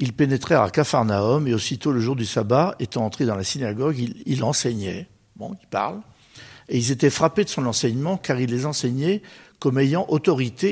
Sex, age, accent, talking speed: male, 60-79, French, 195 wpm